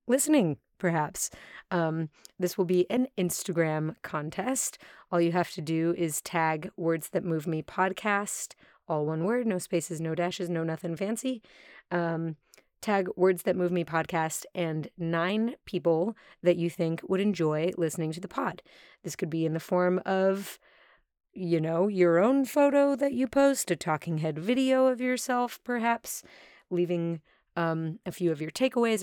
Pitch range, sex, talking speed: 165-205 Hz, female, 165 wpm